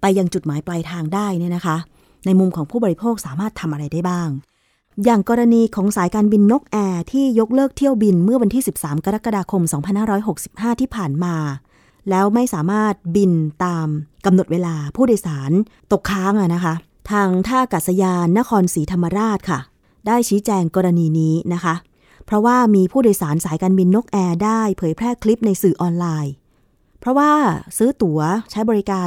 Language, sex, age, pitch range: Thai, female, 20-39, 170-220 Hz